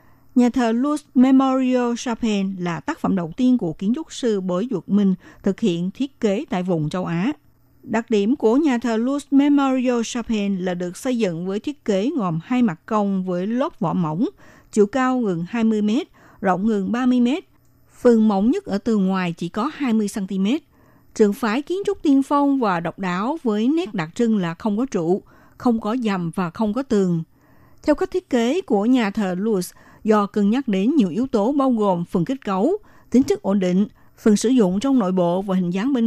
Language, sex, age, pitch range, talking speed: Vietnamese, female, 60-79, 190-255 Hz, 210 wpm